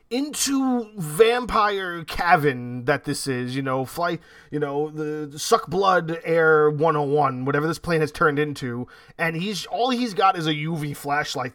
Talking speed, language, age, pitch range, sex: 160 wpm, English, 30-49, 135-170 Hz, male